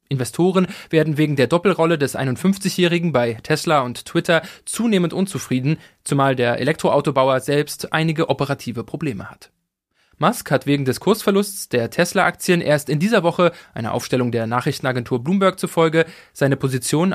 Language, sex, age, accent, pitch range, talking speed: German, male, 20-39, German, 135-180 Hz, 140 wpm